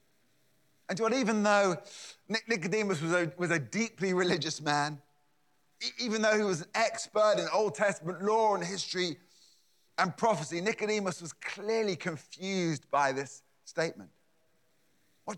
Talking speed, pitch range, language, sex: 125 wpm, 150-210 Hz, English, male